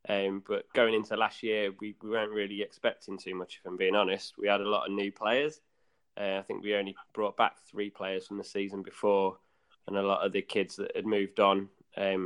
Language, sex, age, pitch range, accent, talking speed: English, male, 20-39, 100-115 Hz, British, 235 wpm